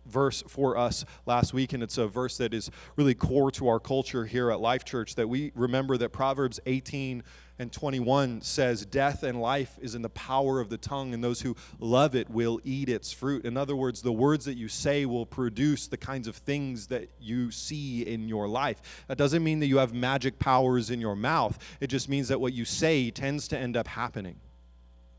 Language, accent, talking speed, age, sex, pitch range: English, American, 215 wpm, 30-49, male, 120-155 Hz